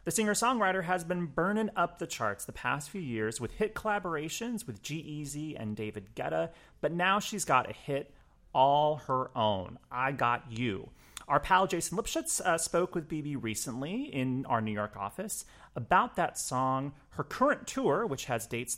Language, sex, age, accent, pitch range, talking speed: English, male, 30-49, American, 115-165 Hz, 175 wpm